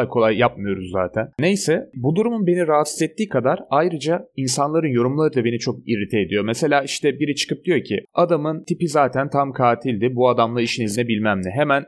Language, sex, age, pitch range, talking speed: Turkish, male, 30-49, 120-150 Hz, 185 wpm